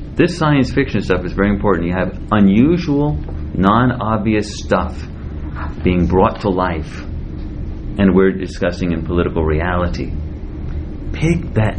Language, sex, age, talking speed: English, male, 30-49, 120 wpm